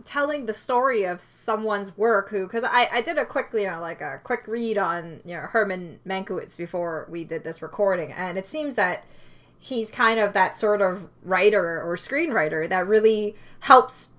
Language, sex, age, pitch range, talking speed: English, female, 20-39, 180-215 Hz, 190 wpm